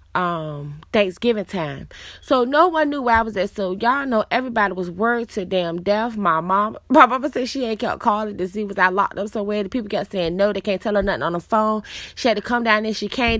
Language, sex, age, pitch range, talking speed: English, female, 20-39, 190-245 Hz, 255 wpm